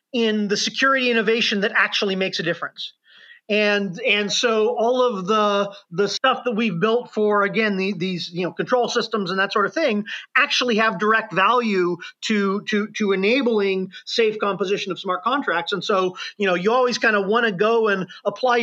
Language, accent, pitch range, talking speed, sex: English, American, 200-245 Hz, 190 wpm, male